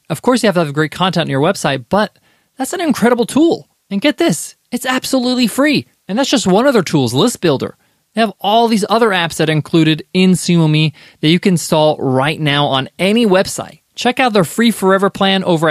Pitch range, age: 150-215 Hz, 20-39